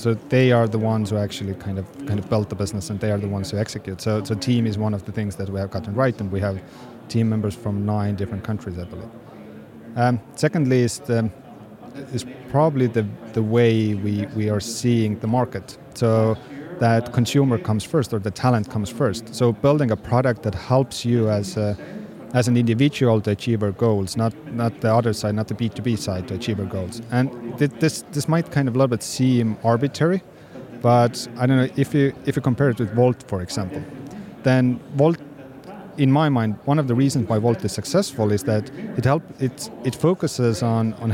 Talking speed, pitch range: 215 wpm, 105-130 Hz